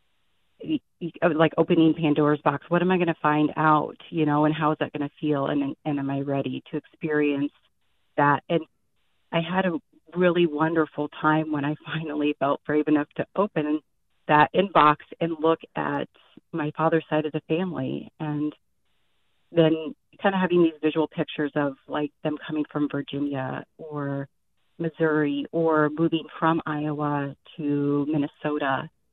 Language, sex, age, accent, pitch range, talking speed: English, female, 30-49, American, 145-160 Hz, 155 wpm